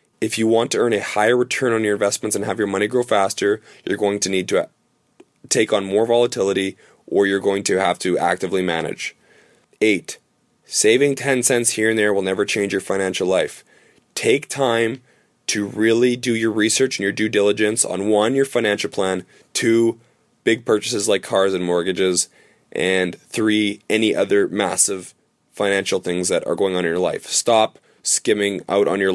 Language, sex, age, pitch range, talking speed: English, male, 20-39, 95-110 Hz, 185 wpm